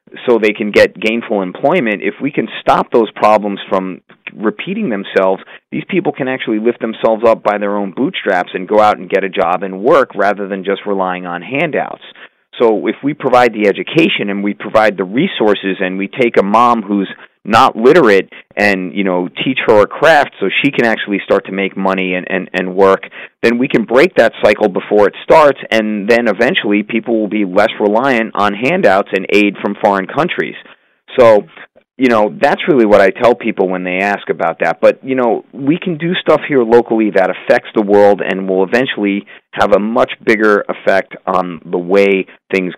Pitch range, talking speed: 95-115 Hz, 200 wpm